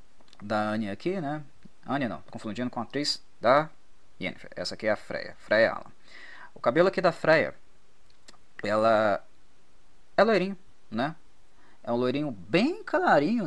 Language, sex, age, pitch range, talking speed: Portuguese, male, 20-39, 115-175 Hz, 145 wpm